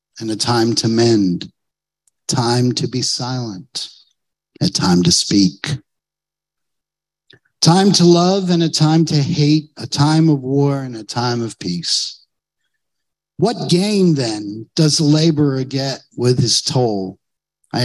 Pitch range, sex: 120-160 Hz, male